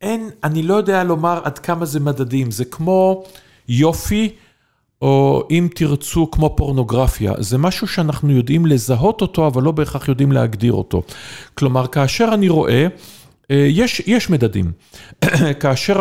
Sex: male